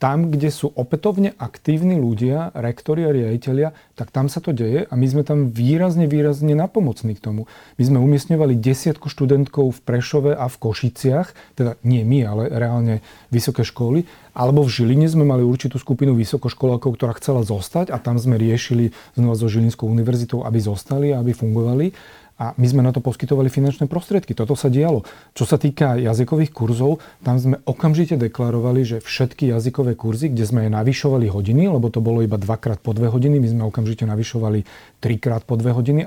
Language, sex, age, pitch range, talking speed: Slovak, male, 40-59, 115-140 Hz, 180 wpm